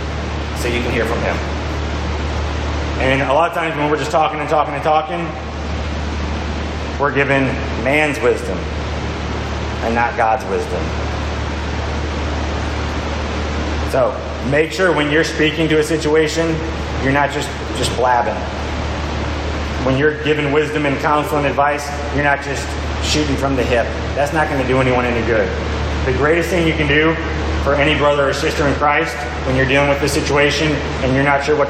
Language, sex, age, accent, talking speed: English, male, 30-49, American, 165 wpm